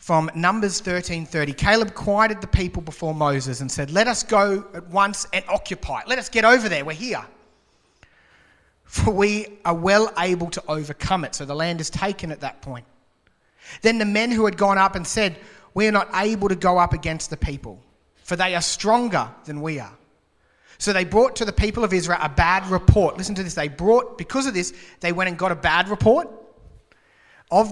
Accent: Australian